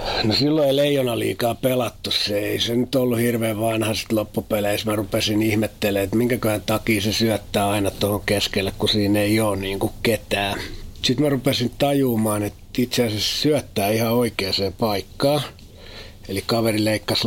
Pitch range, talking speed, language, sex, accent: 100-120 Hz, 165 wpm, Finnish, male, native